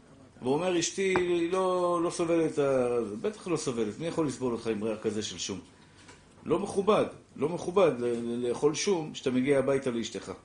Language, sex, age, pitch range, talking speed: Hebrew, male, 50-69, 125-170 Hz, 165 wpm